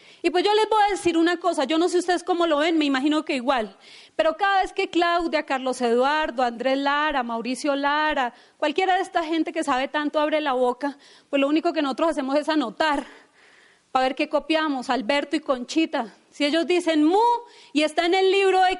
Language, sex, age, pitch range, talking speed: Spanish, female, 30-49, 290-350 Hz, 210 wpm